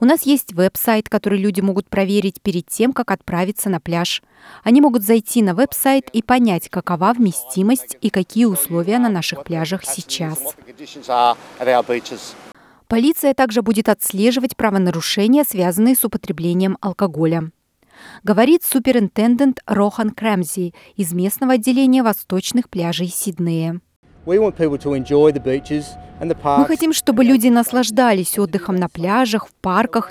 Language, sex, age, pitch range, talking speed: Russian, female, 20-39, 180-240 Hz, 120 wpm